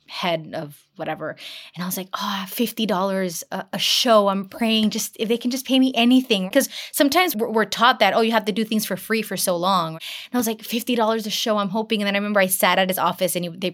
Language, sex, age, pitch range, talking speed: English, female, 20-39, 180-230 Hz, 255 wpm